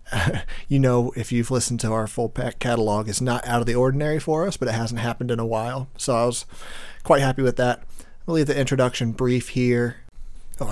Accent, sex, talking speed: American, male, 225 wpm